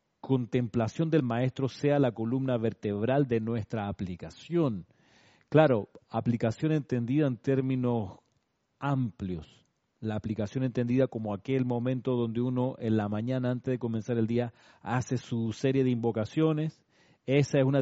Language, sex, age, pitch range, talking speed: Spanish, male, 40-59, 115-150 Hz, 135 wpm